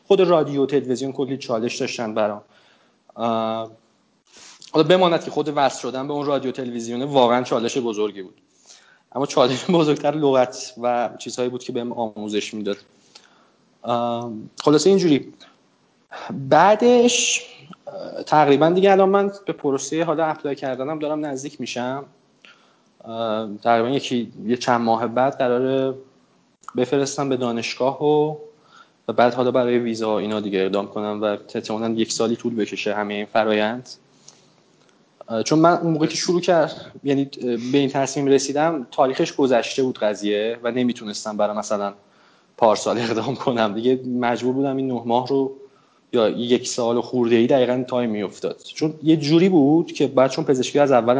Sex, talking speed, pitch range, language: male, 145 wpm, 115-145 Hz, Persian